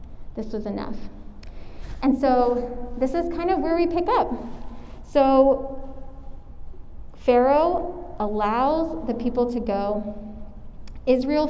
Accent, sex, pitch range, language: American, female, 220-280 Hz, English